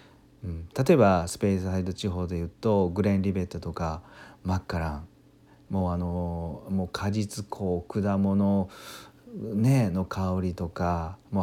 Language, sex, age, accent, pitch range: Japanese, male, 40-59, native, 90-110 Hz